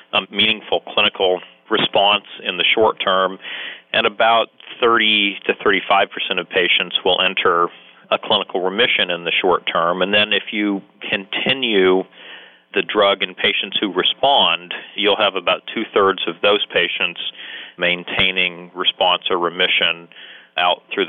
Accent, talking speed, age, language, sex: American, 135 wpm, 40-59, English, male